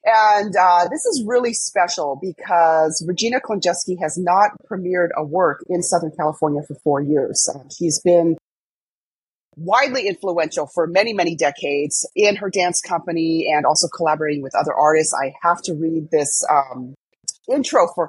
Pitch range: 160-210 Hz